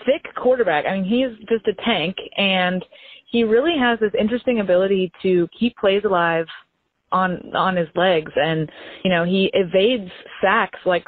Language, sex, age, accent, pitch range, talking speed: English, female, 20-39, American, 175-210 Hz, 170 wpm